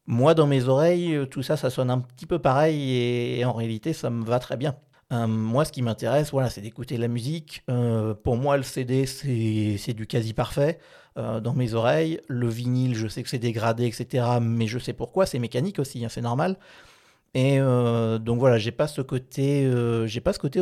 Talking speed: 210 wpm